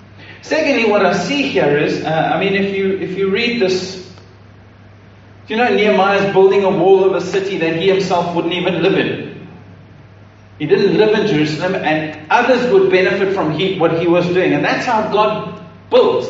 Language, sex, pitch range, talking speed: English, male, 175-215 Hz, 195 wpm